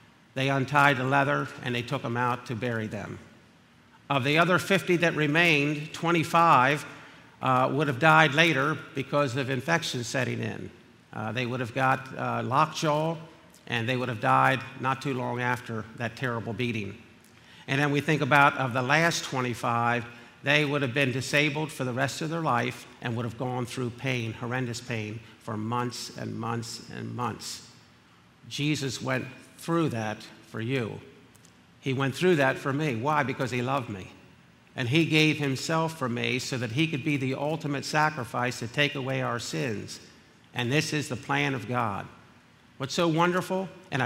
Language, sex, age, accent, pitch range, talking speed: English, male, 50-69, American, 120-150 Hz, 175 wpm